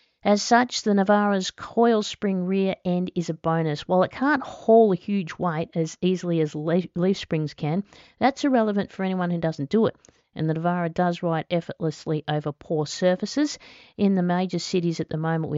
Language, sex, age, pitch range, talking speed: English, female, 50-69, 155-190 Hz, 190 wpm